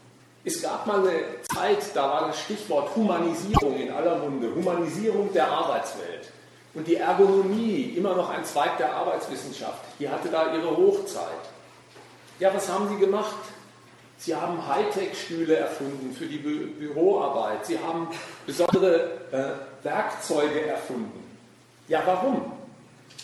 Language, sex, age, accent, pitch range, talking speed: German, male, 40-59, German, 160-225 Hz, 130 wpm